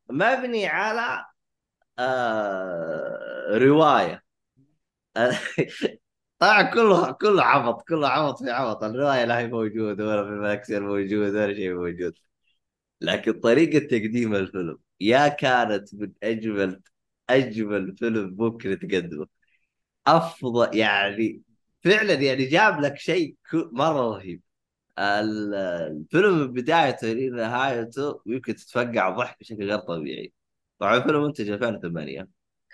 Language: Arabic